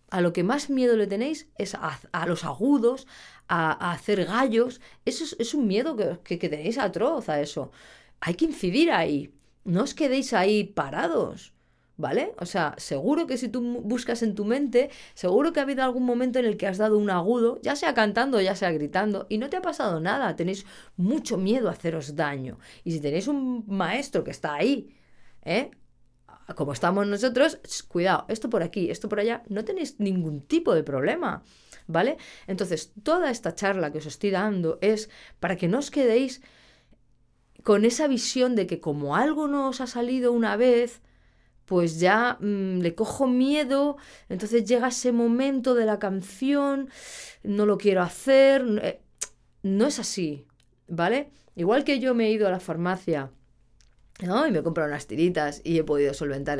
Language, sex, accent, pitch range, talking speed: Spanish, female, Spanish, 175-255 Hz, 180 wpm